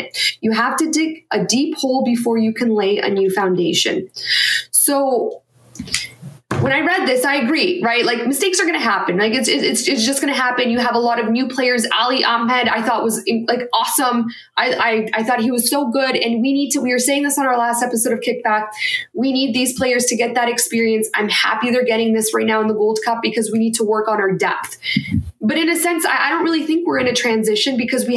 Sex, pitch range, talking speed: female, 220-270 Hz, 240 wpm